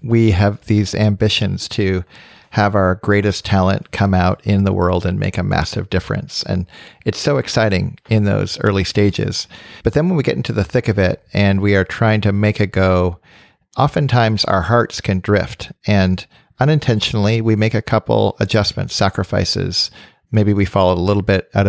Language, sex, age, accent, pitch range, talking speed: English, male, 40-59, American, 95-115 Hz, 180 wpm